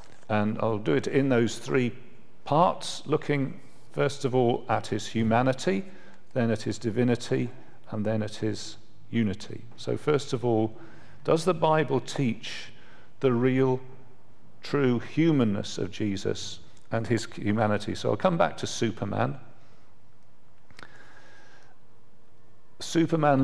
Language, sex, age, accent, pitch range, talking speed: English, male, 50-69, British, 110-135 Hz, 125 wpm